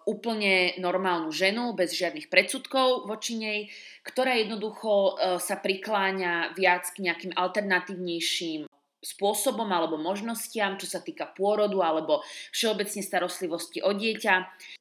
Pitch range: 180-230 Hz